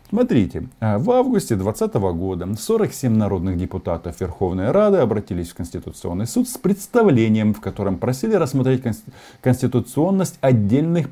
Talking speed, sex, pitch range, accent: 120 wpm, male, 90-130 Hz, native